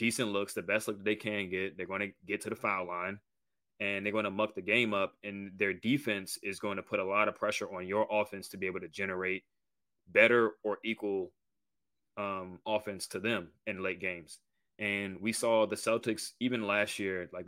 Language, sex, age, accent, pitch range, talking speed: English, male, 20-39, American, 95-110 Hz, 215 wpm